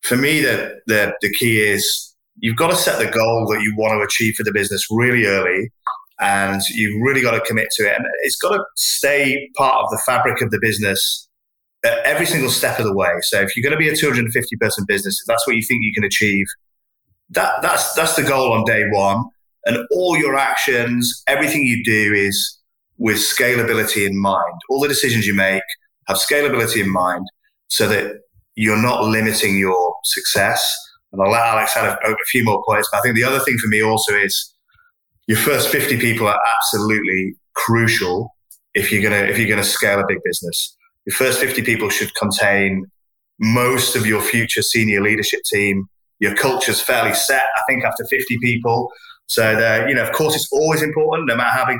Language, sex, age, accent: English, male, 20-39, British